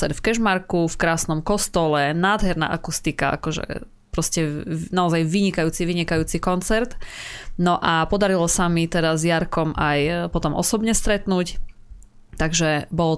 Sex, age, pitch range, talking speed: female, 20-39, 155-185 Hz, 120 wpm